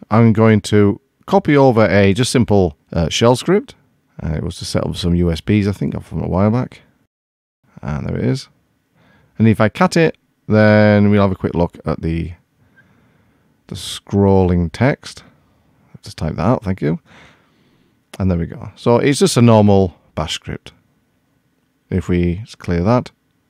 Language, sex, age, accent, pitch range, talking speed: English, male, 30-49, British, 90-120 Hz, 170 wpm